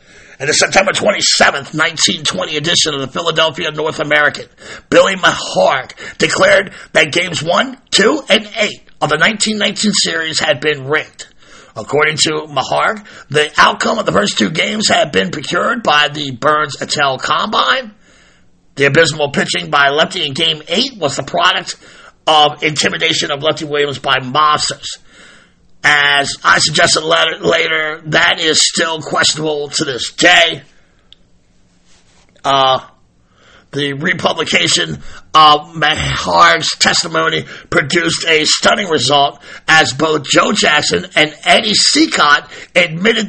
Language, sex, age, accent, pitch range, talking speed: English, male, 50-69, American, 150-180 Hz, 130 wpm